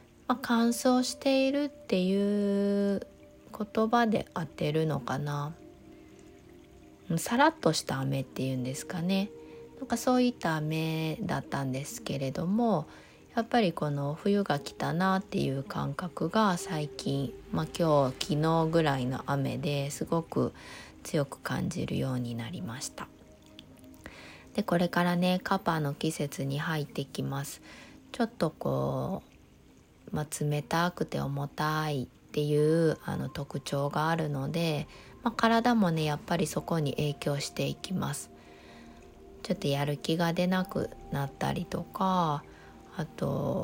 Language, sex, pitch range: Japanese, female, 135-185 Hz